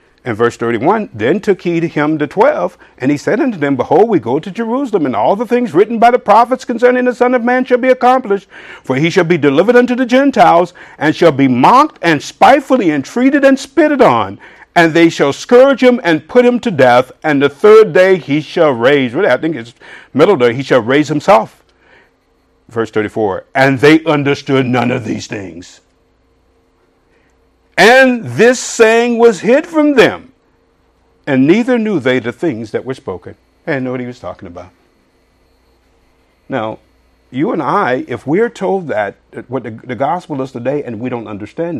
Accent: American